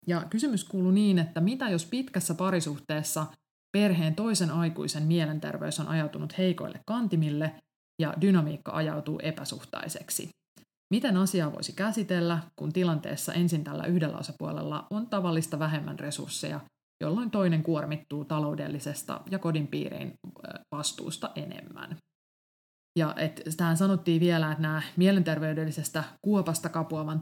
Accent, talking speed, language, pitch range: native, 115 wpm, Finnish, 155-185 Hz